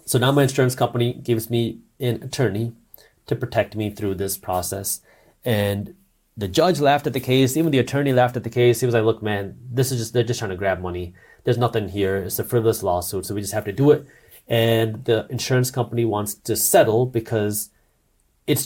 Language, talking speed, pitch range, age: English, 210 wpm, 110-135 Hz, 30-49